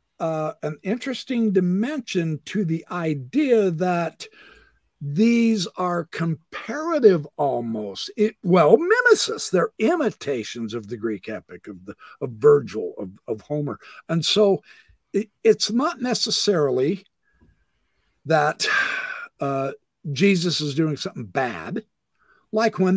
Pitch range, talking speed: 145-235 Hz, 105 wpm